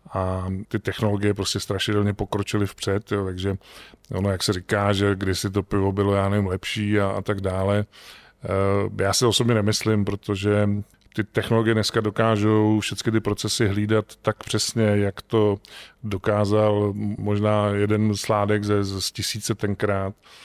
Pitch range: 100-110 Hz